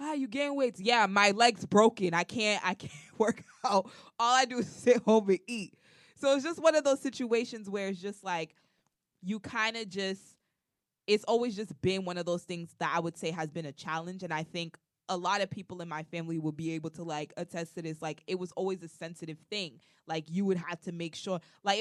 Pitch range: 165-205 Hz